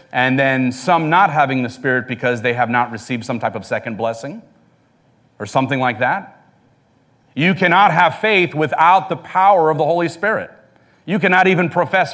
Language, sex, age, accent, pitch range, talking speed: English, male, 40-59, American, 125-165 Hz, 180 wpm